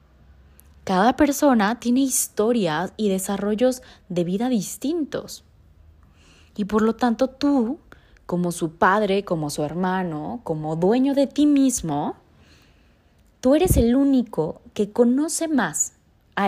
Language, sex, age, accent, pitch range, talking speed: Spanish, female, 20-39, Mexican, 170-255 Hz, 120 wpm